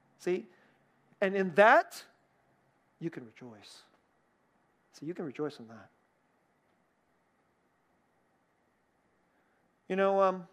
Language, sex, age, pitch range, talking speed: English, male, 40-59, 140-210 Hz, 90 wpm